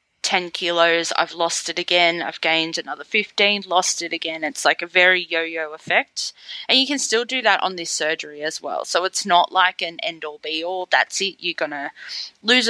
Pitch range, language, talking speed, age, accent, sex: 165-215 Hz, English, 210 wpm, 20-39, Australian, female